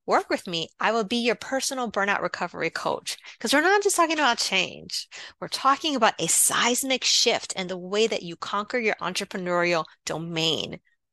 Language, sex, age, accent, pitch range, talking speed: English, female, 30-49, American, 180-245 Hz, 180 wpm